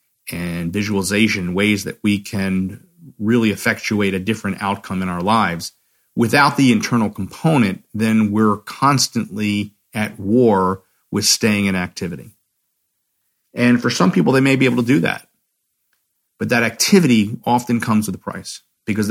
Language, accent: English, American